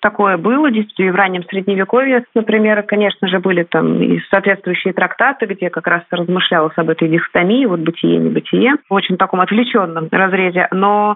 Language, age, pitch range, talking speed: Russian, 30-49, 185-230 Hz, 160 wpm